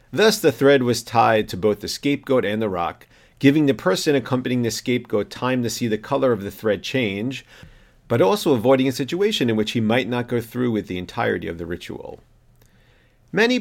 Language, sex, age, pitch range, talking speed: English, male, 40-59, 110-140 Hz, 205 wpm